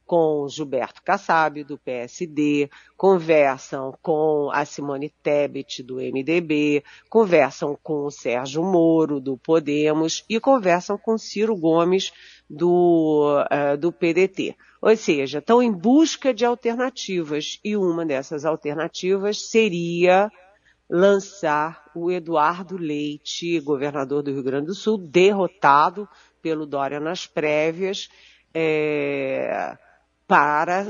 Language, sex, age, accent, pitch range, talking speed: Portuguese, female, 50-69, Brazilian, 145-180 Hz, 110 wpm